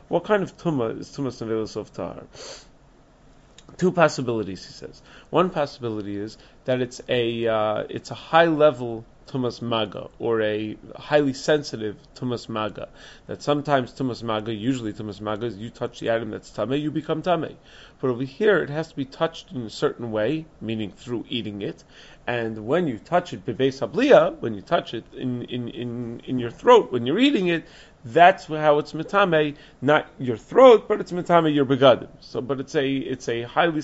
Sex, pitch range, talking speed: male, 115-155 Hz, 180 wpm